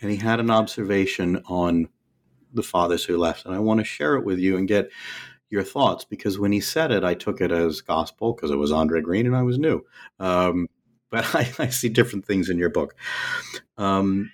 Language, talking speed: English, 220 wpm